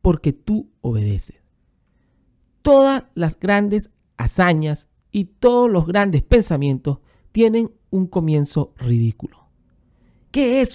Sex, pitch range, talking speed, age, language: male, 125-210 Hz, 100 wpm, 50-69, Spanish